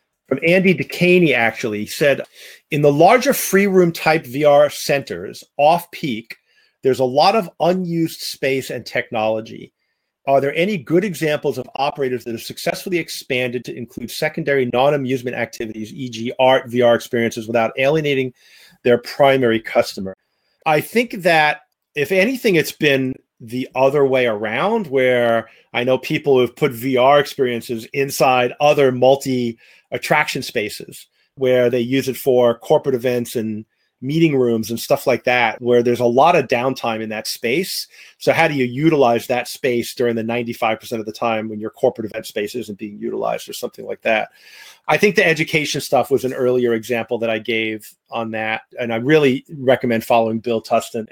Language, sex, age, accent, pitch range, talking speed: English, male, 40-59, American, 115-145 Hz, 165 wpm